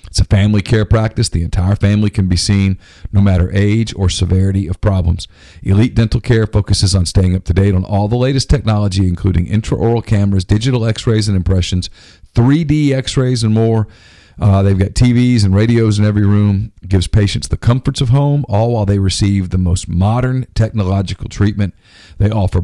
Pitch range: 95-115 Hz